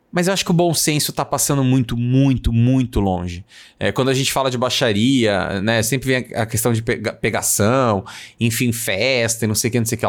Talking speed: 230 wpm